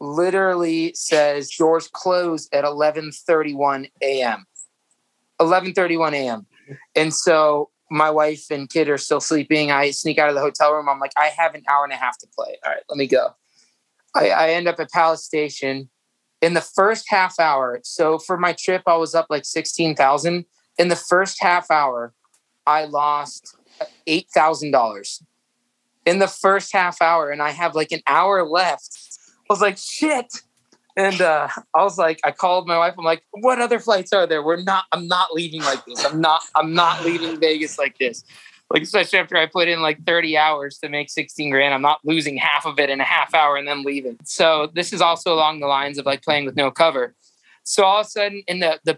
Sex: male